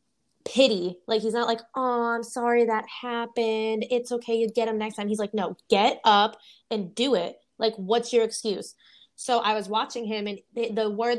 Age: 20-39